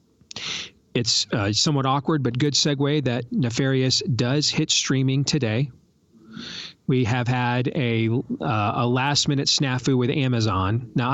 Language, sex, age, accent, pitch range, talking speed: English, male, 40-59, American, 115-140 Hz, 135 wpm